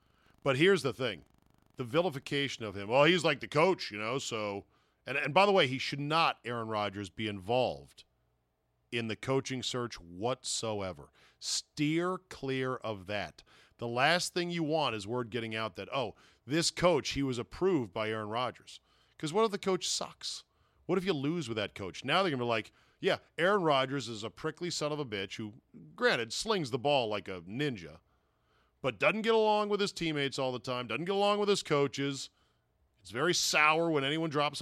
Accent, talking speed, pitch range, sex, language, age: American, 205 wpm, 105-150 Hz, male, English, 40-59